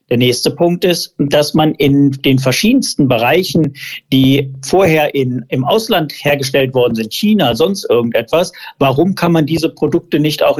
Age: 50-69